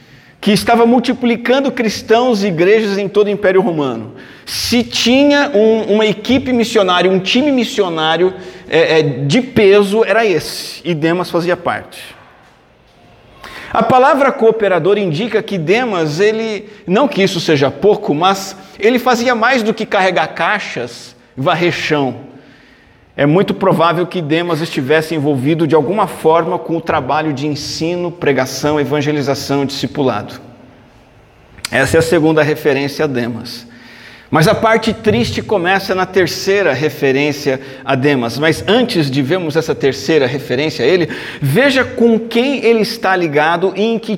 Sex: male